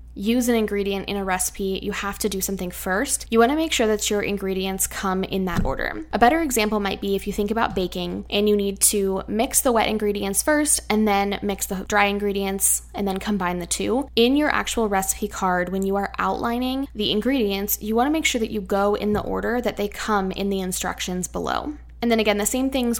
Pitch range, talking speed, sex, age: 195-225 Hz, 230 wpm, female, 10-29